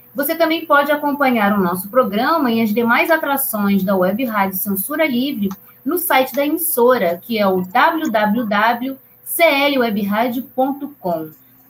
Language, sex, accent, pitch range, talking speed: Portuguese, female, Brazilian, 195-270 Hz, 125 wpm